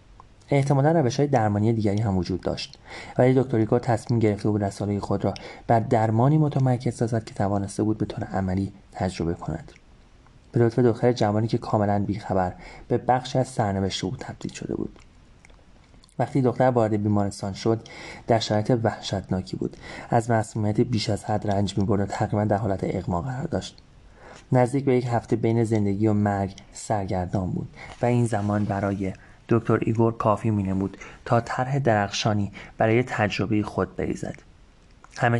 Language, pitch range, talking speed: Persian, 100-120 Hz, 155 wpm